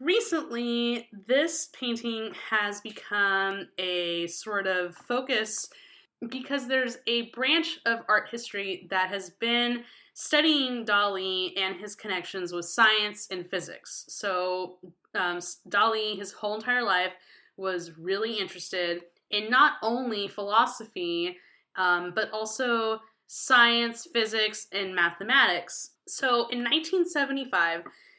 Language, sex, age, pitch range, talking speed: English, female, 10-29, 180-245 Hz, 110 wpm